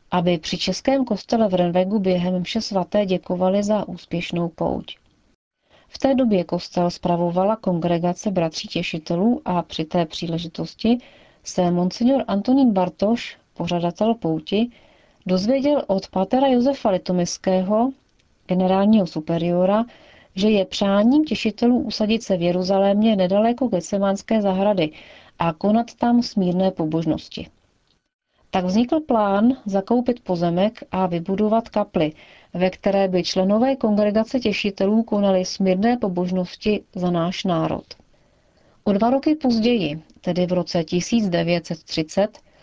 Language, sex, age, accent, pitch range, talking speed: Czech, female, 40-59, native, 180-220 Hz, 115 wpm